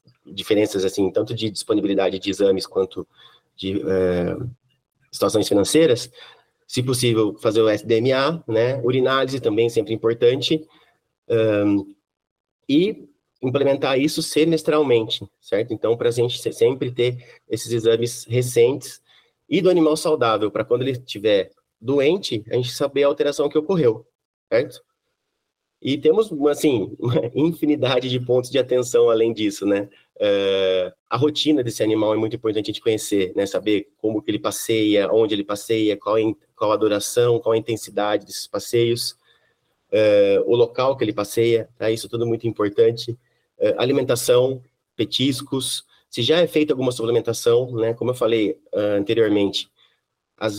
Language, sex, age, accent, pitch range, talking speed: Portuguese, male, 20-39, Brazilian, 110-145 Hz, 145 wpm